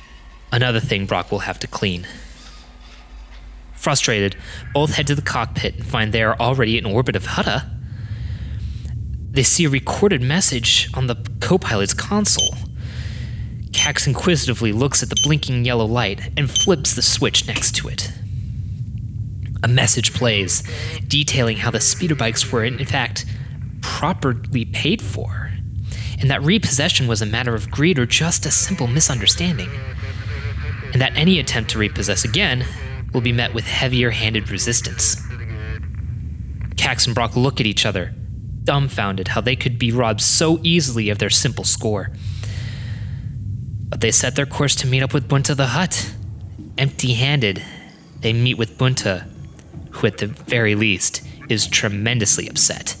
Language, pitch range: English, 105-130 Hz